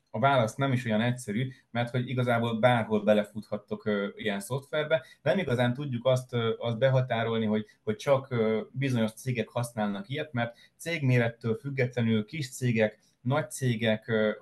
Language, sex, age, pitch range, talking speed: Hungarian, male, 30-49, 105-120 Hz, 135 wpm